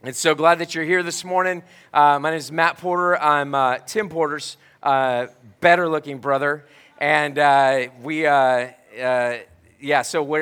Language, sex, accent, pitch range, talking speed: English, male, American, 130-160 Hz, 165 wpm